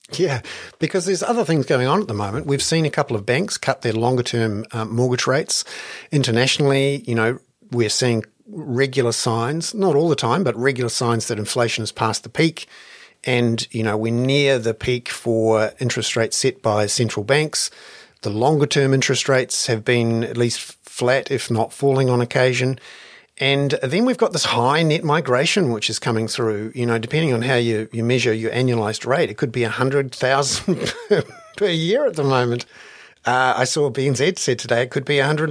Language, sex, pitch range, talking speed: English, male, 115-145 Hz, 200 wpm